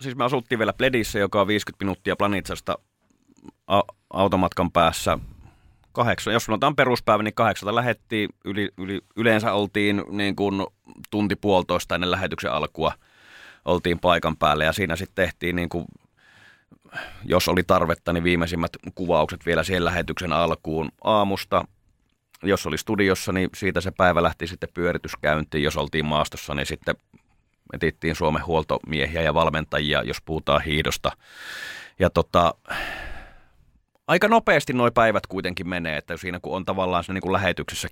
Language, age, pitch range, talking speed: Finnish, 30-49, 80-100 Hz, 140 wpm